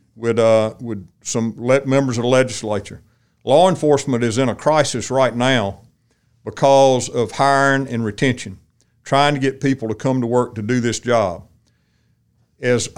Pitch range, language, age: 115-140 Hz, English, 50-69